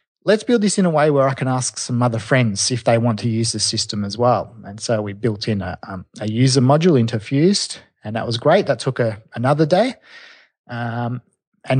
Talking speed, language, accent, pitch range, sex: 225 wpm, English, Australian, 115-135 Hz, male